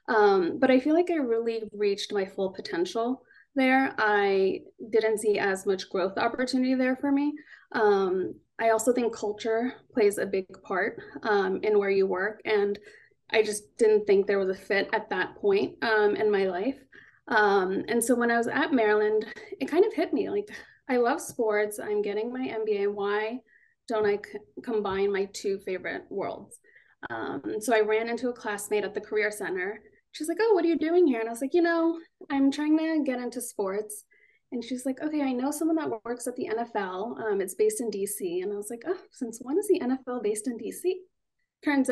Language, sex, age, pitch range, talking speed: English, female, 20-39, 205-285 Hz, 205 wpm